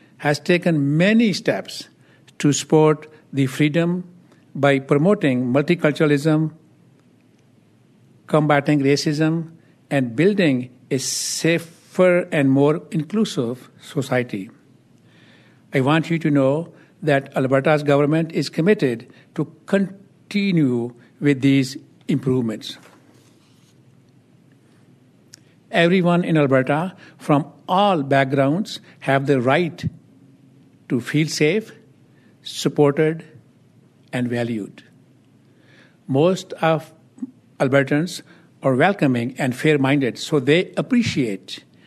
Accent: Indian